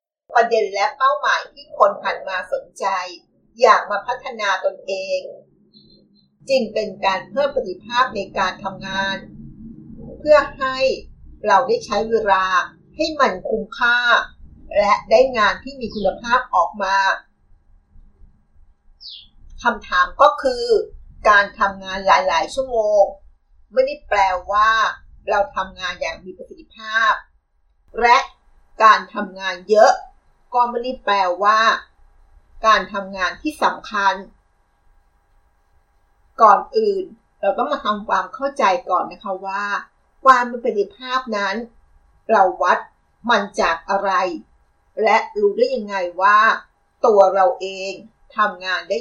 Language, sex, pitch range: Thai, female, 185-260 Hz